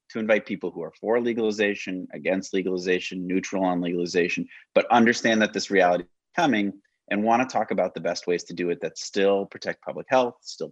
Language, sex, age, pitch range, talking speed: English, male, 30-49, 85-115 Hz, 200 wpm